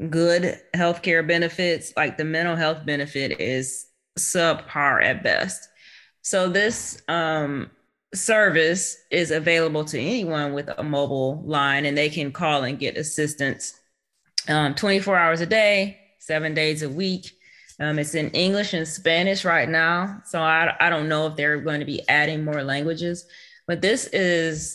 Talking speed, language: 155 wpm, English